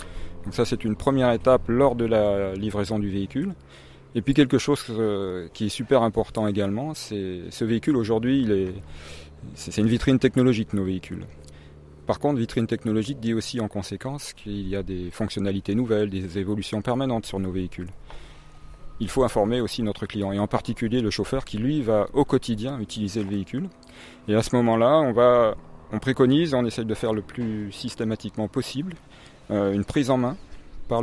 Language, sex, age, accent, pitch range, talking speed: French, male, 30-49, French, 95-120 Hz, 180 wpm